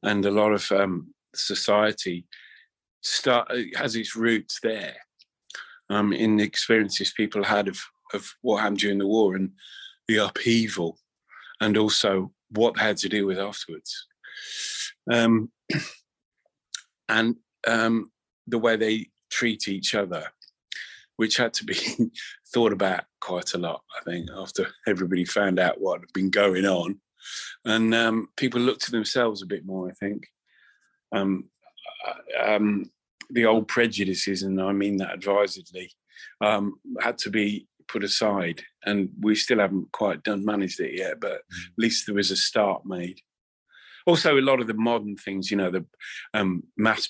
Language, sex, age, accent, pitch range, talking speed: English, male, 30-49, British, 95-115 Hz, 150 wpm